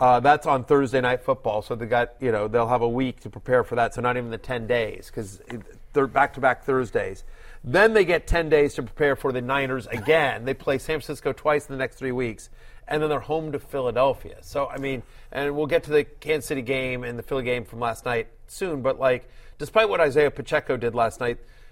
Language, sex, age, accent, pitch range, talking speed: English, male, 40-59, American, 125-155 Hz, 240 wpm